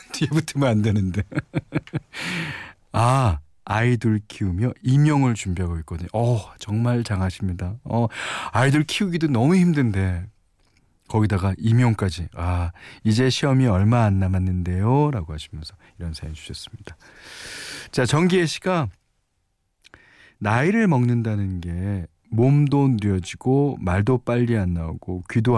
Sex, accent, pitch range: male, native, 95-145 Hz